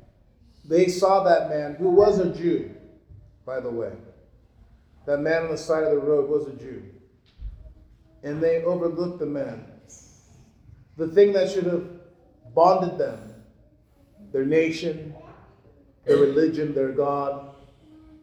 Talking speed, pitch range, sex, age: 130 wpm, 140-180 Hz, male, 40-59